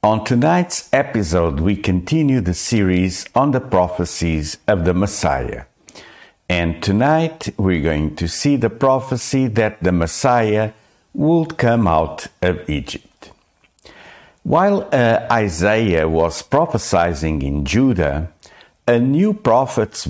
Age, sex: 50-69, male